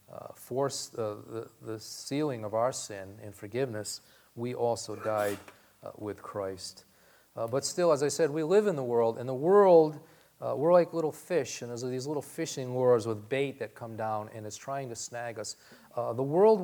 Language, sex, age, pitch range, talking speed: English, male, 40-59, 110-140 Hz, 200 wpm